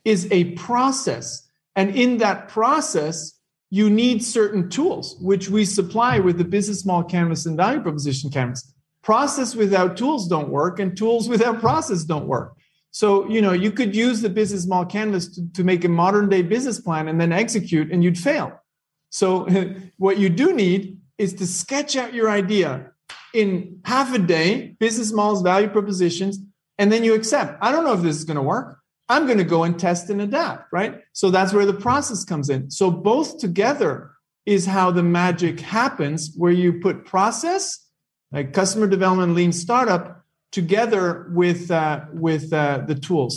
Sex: male